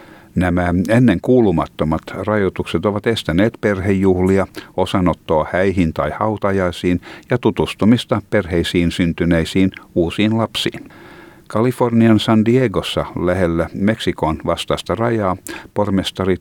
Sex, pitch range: male, 85-105 Hz